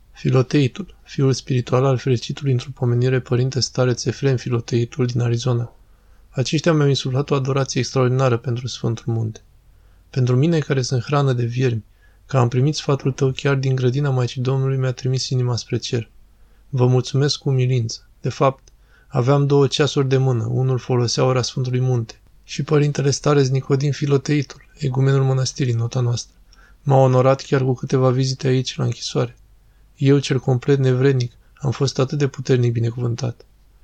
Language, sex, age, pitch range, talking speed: Romanian, male, 20-39, 120-135 Hz, 160 wpm